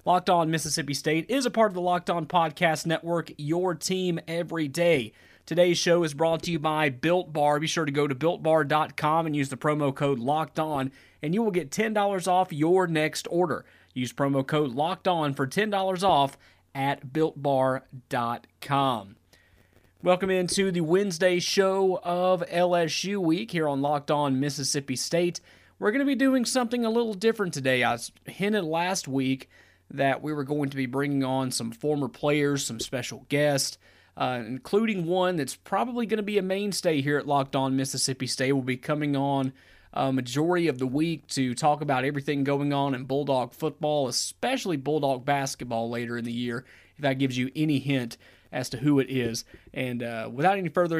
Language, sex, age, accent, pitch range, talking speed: English, male, 30-49, American, 135-170 Hz, 185 wpm